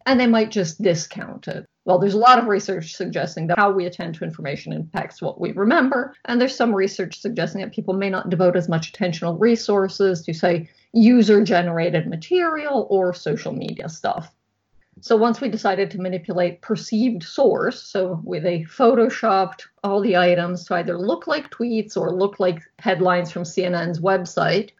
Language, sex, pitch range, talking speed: English, female, 175-215 Hz, 175 wpm